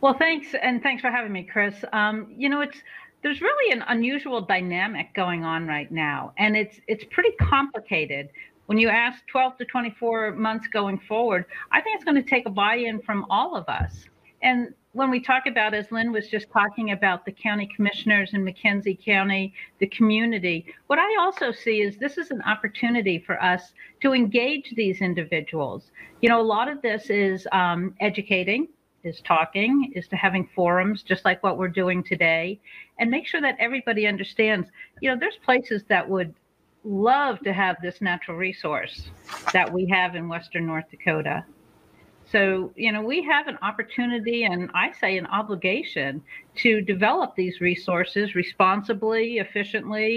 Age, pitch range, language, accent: 50-69, 185-240 Hz, English, American